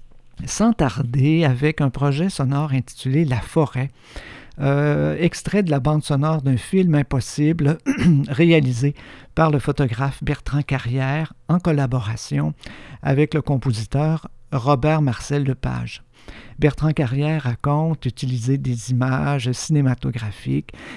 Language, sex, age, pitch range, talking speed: French, male, 50-69, 125-150 Hz, 110 wpm